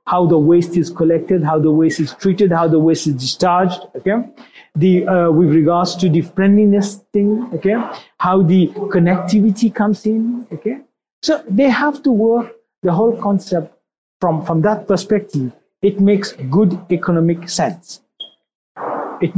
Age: 50-69